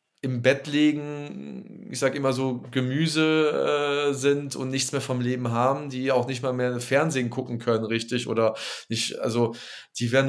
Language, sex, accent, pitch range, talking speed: German, male, German, 120-145 Hz, 175 wpm